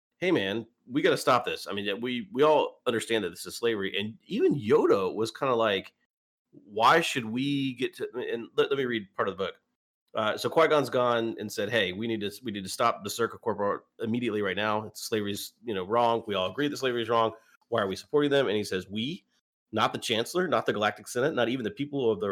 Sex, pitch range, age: male, 100-130 Hz, 30-49